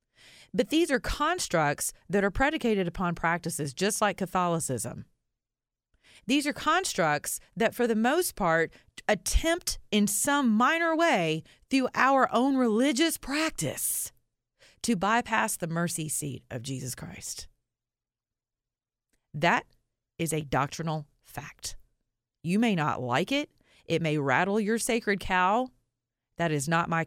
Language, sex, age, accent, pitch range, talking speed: English, female, 30-49, American, 140-230 Hz, 130 wpm